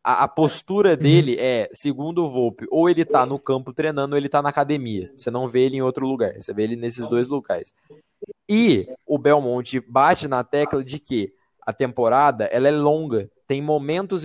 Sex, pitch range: male, 120-155 Hz